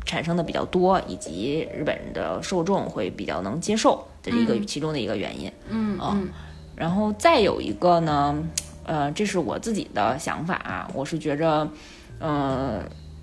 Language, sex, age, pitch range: Chinese, female, 20-39, 145-185 Hz